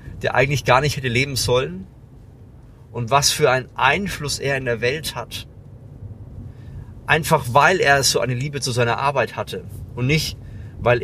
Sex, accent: male, German